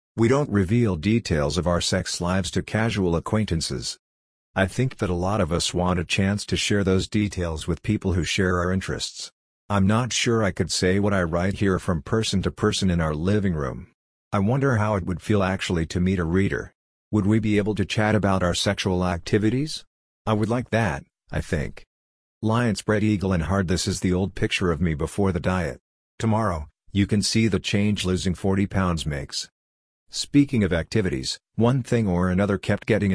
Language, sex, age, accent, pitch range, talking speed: English, male, 50-69, American, 90-105 Hz, 200 wpm